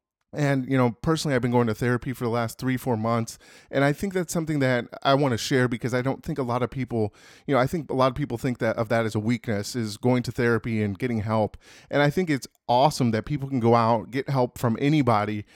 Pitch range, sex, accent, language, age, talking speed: 120-150 Hz, male, American, English, 30-49, 265 wpm